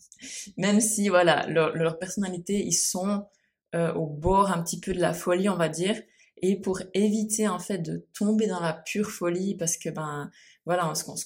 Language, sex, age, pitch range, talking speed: French, female, 20-39, 160-185 Hz, 195 wpm